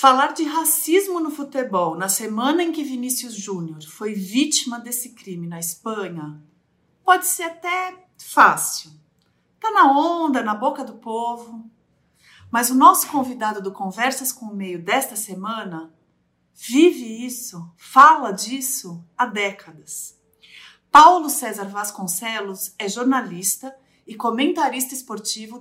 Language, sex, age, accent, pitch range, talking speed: Portuguese, female, 40-59, Brazilian, 195-275 Hz, 125 wpm